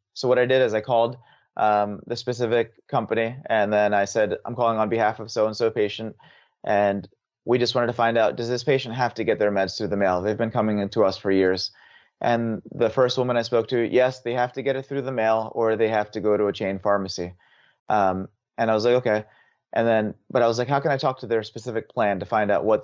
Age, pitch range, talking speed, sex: 30-49, 105-125 Hz, 250 wpm, male